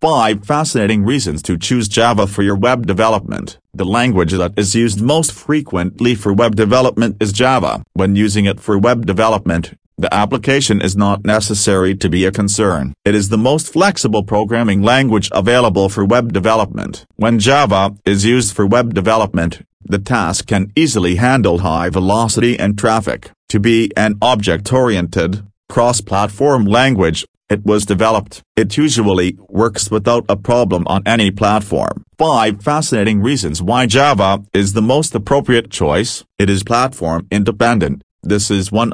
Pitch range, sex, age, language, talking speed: 100-120 Hz, male, 40-59, English, 155 wpm